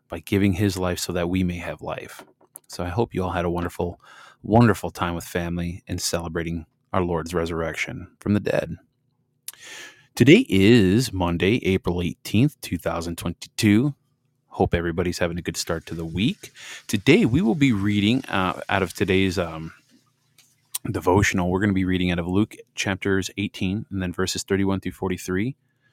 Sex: male